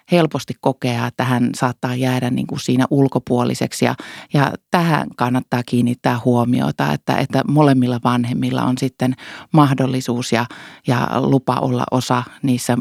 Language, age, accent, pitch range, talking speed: Finnish, 30-49, native, 125-140 Hz, 135 wpm